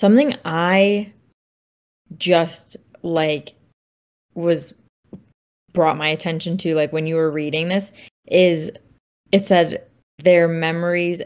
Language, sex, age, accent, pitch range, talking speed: English, female, 10-29, American, 155-180 Hz, 105 wpm